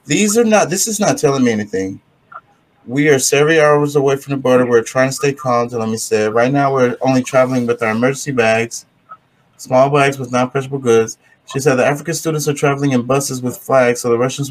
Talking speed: 220 wpm